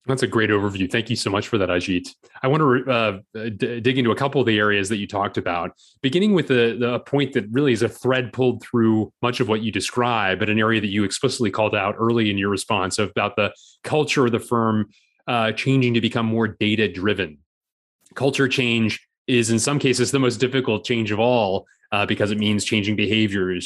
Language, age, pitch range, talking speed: English, 30-49, 105-125 Hz, 225 wpm